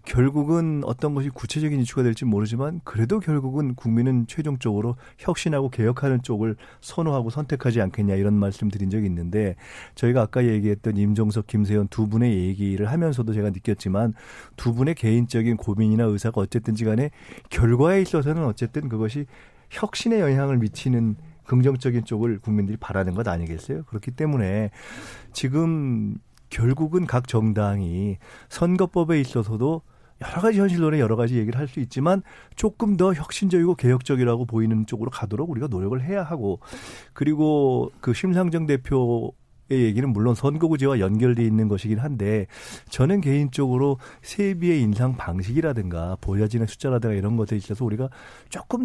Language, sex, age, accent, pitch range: Korean, male, 40-59, native, 110-145 Hz